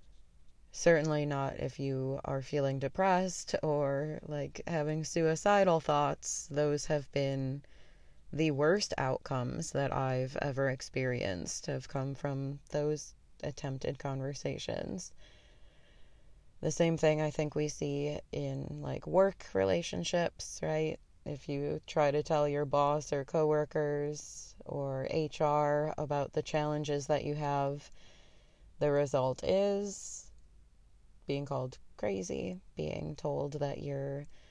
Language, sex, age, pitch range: English, female, 20-39, 140-155 Hz